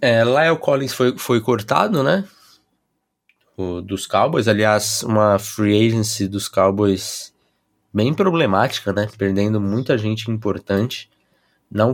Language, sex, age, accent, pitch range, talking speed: Portuguese, male, 20-39, Brazilian, 100-120 Hz, 110 wpm